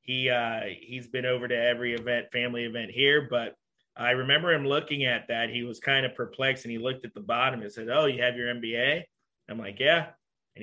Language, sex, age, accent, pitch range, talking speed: English, male, 30-49, American, 120-135 Hz, 225 wpm